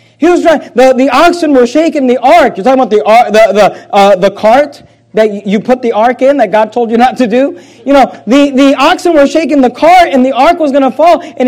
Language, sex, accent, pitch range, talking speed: English, male, American, 185-240 Hz, 260 wpm